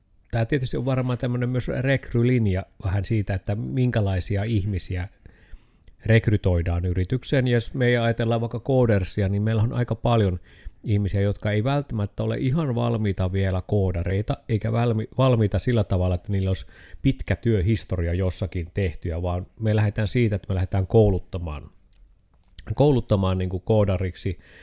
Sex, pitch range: male, 90-115 Hz